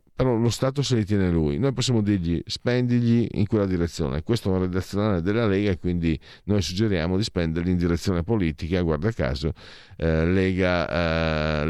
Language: Italian